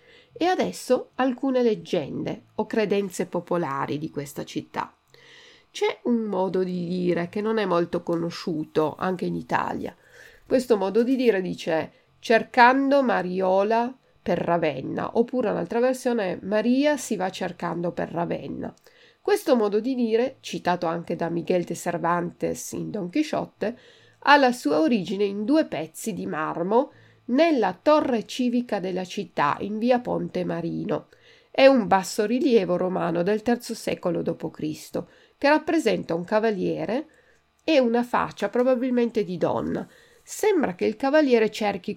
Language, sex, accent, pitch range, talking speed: Italian, female, native, 185-260 Hz, 135 wpm